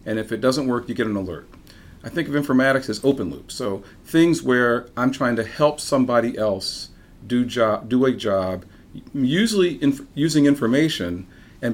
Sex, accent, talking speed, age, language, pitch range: male, American, 170 wpm, 40-59, English, 110-135 Hz